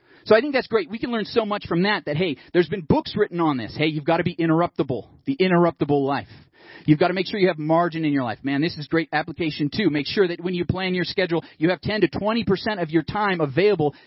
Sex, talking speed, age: male, 275 wpm, 30-49